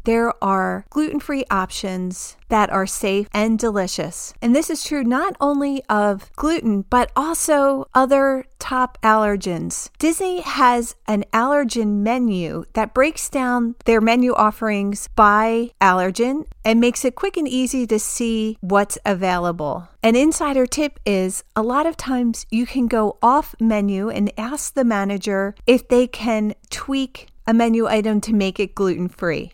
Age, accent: 40-59, American